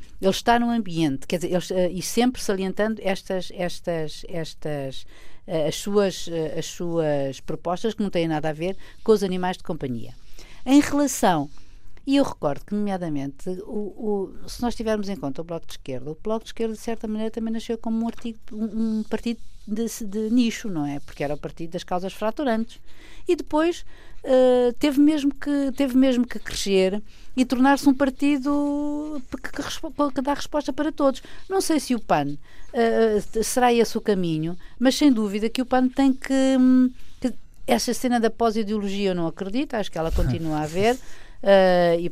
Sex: female